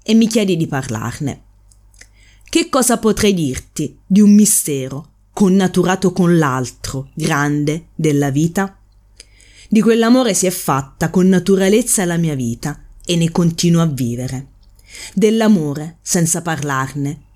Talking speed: 125 wpm